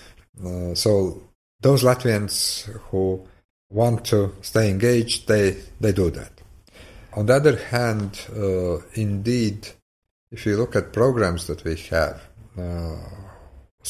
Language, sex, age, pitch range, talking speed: English, male, 50-69, 90-110 Hz, 120 wpm